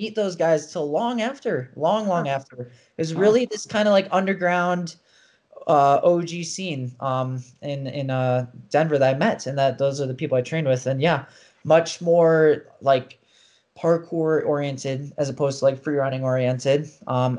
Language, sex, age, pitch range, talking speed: English, male, 20-39, 130-160 Hz, 175 wpm